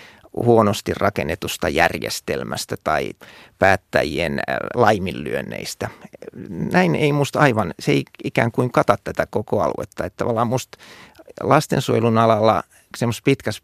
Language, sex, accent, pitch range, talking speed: Finnish, male, native, 105-130 Hz, 105 wpm